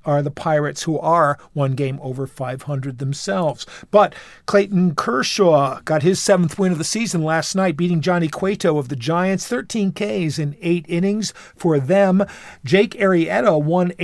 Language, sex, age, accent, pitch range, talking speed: English, male, 50-69, American, 145-185 Hz, 160 wpm